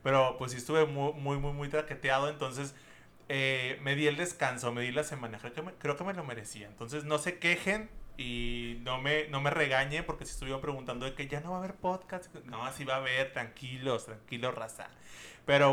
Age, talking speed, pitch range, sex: 30-49, 225 wpm, 130-170 Hz, male